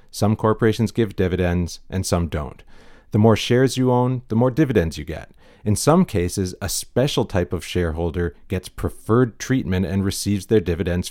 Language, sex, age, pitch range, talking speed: English, male, 40-59, 90-110 Hz, 175 wpm